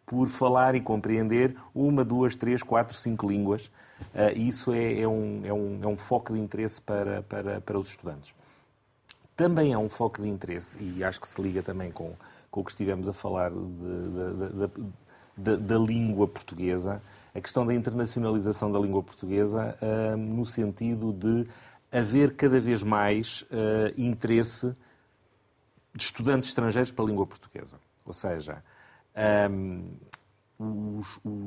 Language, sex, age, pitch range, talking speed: Portuguese, male, 30-49, 100-120 Hz, 130 wpm